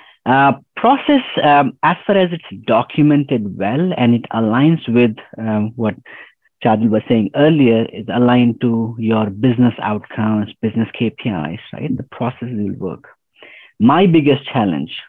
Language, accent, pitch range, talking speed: English, Indian, 110-140 Hz, 140 wpm